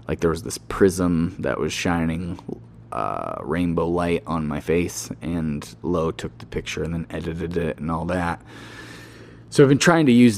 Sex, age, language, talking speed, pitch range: male, 30-49, English, 185 wpm, 85-105 Hz